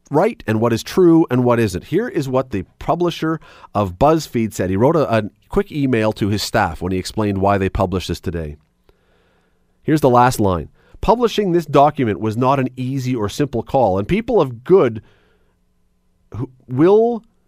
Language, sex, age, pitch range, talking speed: English, male, 40-59, 105-160 Hz, 180 wpm